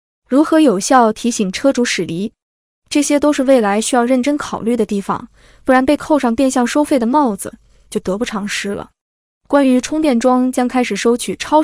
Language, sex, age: Chinese, female, 20-39